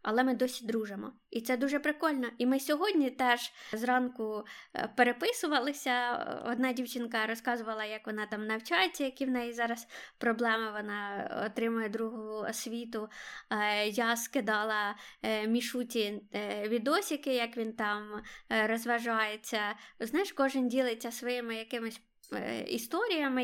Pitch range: 230-265 Hz